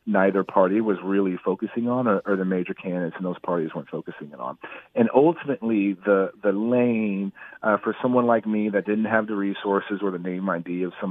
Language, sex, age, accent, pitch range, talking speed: English, male, 40-59, American, 95-115 Hz, 210 wpm